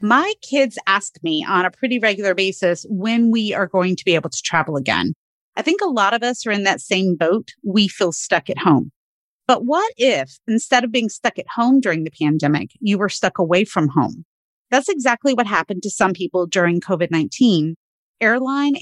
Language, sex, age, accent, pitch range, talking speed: English, female, 30-49, American, 180-245 Hz, 200 wpm